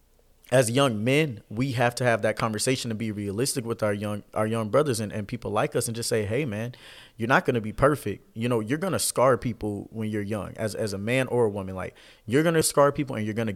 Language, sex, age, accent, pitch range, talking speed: English, male, 20-39, American, 100-120 Hz, 270 wpm